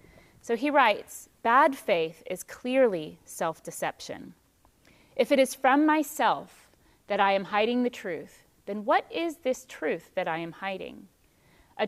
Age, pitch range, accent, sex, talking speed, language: 30-49, 175-240 Hz, American, female, 145 wpm, English